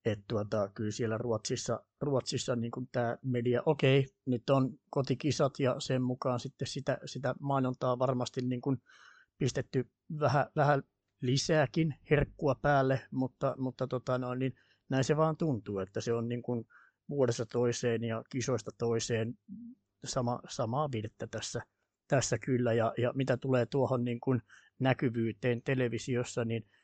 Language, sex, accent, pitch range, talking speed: Finnish, male, native, 120-135 Hz, 135 wpm